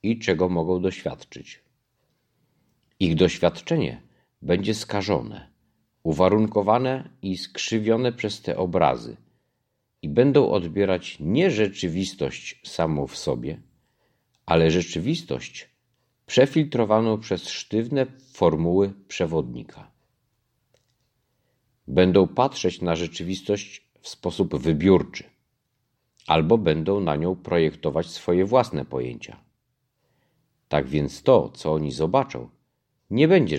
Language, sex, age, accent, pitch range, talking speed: Polish, male, 50-69, native, 85-120 Hz, 95 wpm